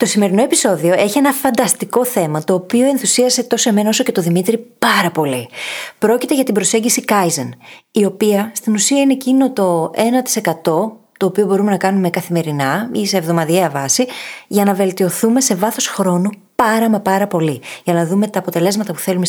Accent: native